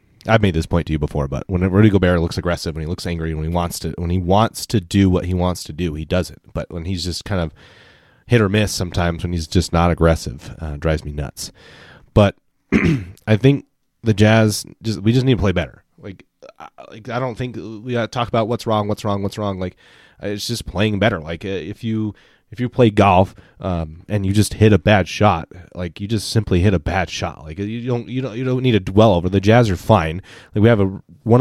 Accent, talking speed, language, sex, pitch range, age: American, 245 wpm, English, male, 90-115 Hz, 30-49